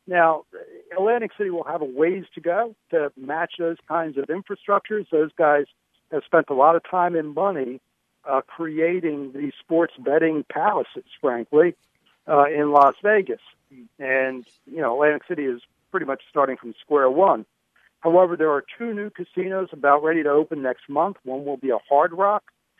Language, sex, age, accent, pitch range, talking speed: English, male, 60-79, American, 135-180 Hz, 175 wpm